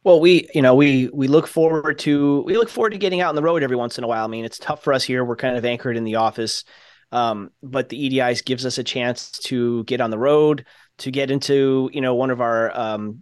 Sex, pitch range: male, 125-155 Hz